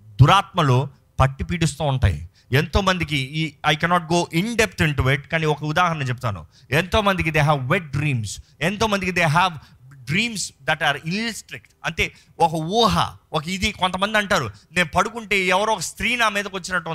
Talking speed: 165 wpm